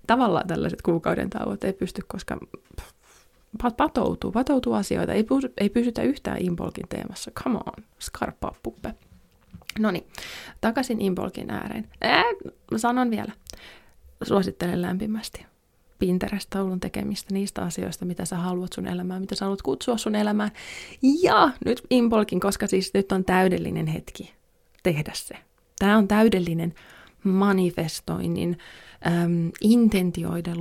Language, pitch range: Finnish, 170-220 Hz